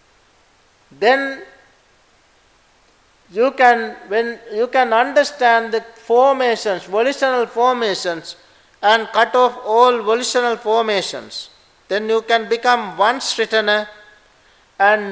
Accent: Indian